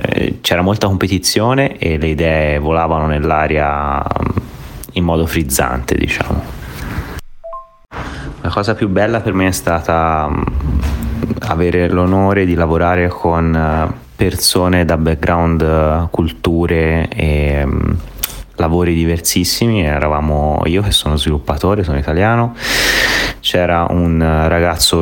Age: 30-49